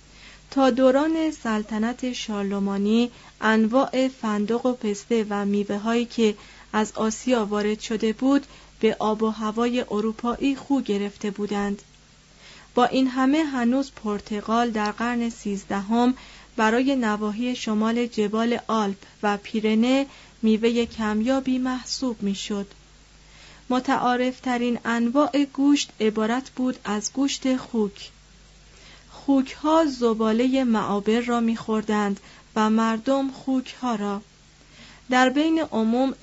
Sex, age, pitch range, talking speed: female, 30-49, 215-260 Hz, 105 wpm